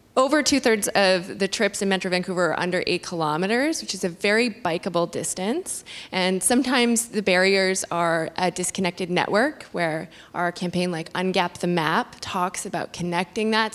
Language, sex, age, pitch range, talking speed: English, female, 20-39, 180-230 Hz, 160 wpm